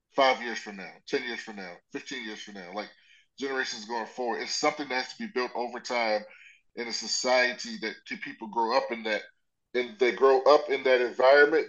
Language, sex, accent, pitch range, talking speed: English, male, American, 115-150 Hz, 210 wpm